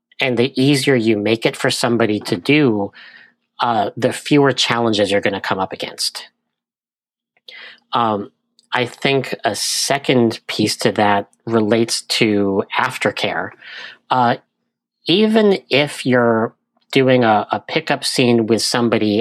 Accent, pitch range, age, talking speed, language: American, 110-140 Hz, 40-59, 130 wpm, English